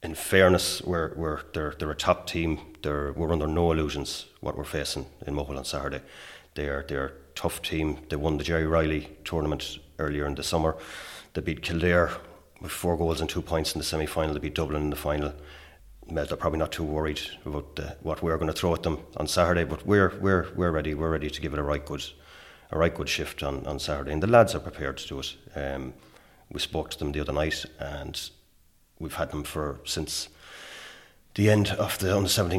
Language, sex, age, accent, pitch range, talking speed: English, male, 30-49, Irish, 75-85 Hz, 220 wpm